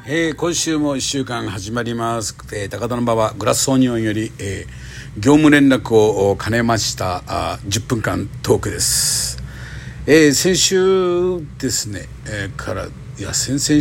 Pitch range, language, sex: 105-130 Hz, Japanese, male